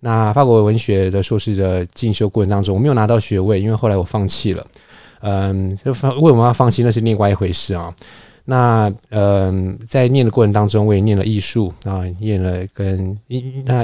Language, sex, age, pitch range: Chinese, male, 20-39, 95-115 Hz